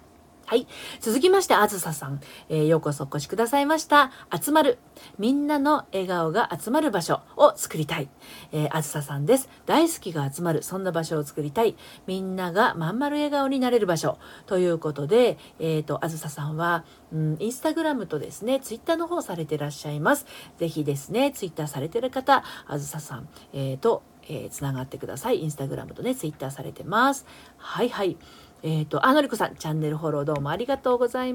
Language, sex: Japanese, female